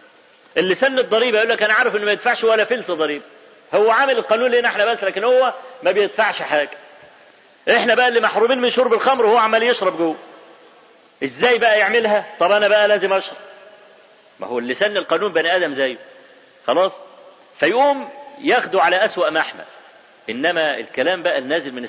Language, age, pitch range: Arabic, 40-59, 205-255 Hz